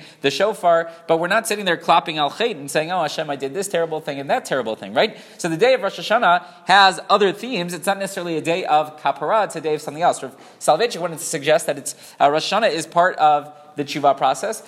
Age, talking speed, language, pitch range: 30-49, 245 wpm, English, 145-185 Hz